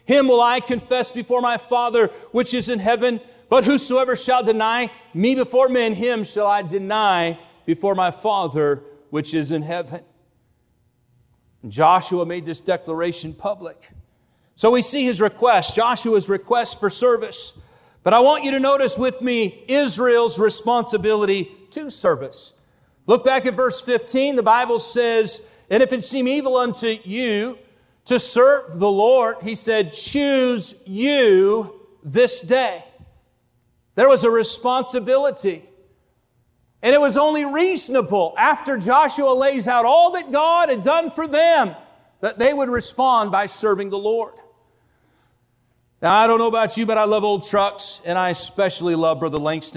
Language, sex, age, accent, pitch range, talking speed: English, male, 40-59, American, 165-250 Hz, 150 wpm